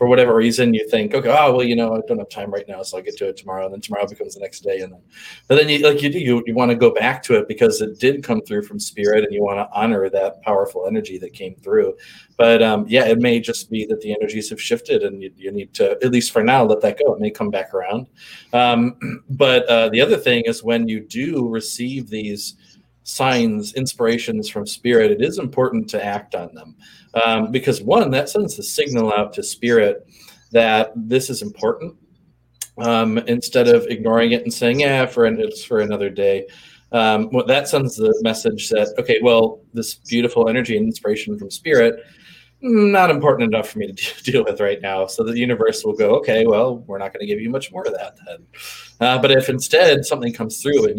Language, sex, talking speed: English, male, 225 wpm